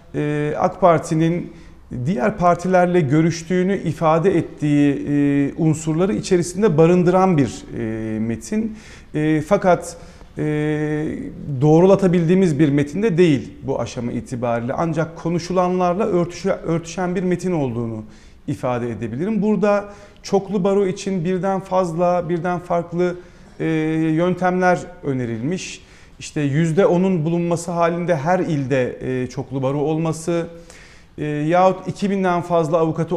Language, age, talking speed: Turkish, 40-59, 90 wpm